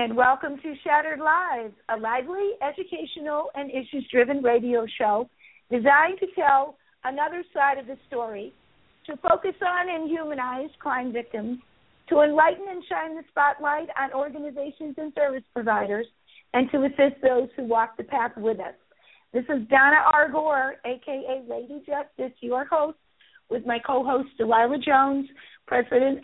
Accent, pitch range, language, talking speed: American, 255-310 Hz, English, 145 wpm